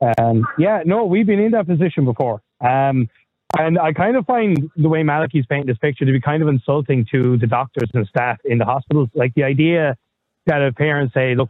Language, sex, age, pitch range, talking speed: English, male, 30-49, 120-145 Hz, 220 wpm